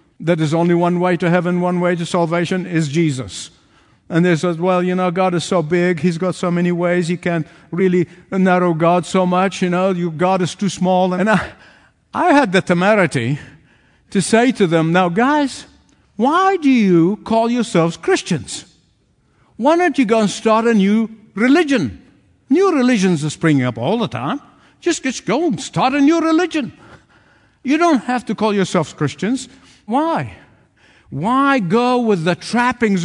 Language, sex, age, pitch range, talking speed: English, male, 60-79, 145-215 Hz, 175 wpm